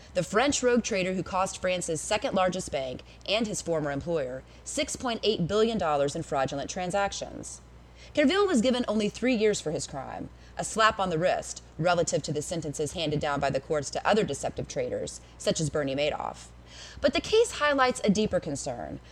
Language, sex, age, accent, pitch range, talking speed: English, female, 20-39, American, 150-215 Hz, 175 wpm